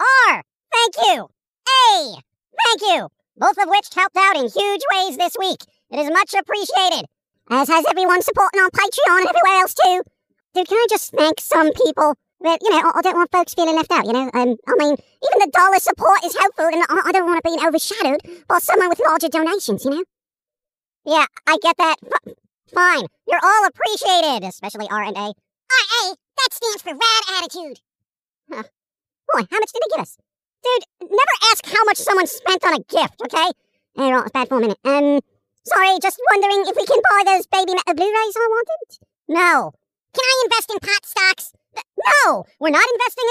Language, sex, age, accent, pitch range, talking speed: English, male, 40-59, American, 310-405 Hz, 195 wpm